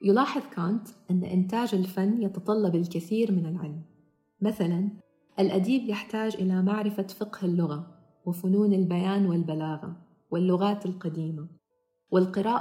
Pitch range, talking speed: 175-205 Hz, 105 wpm